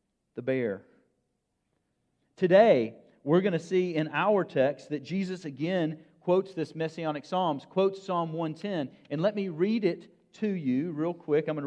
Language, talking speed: English, 160 wpm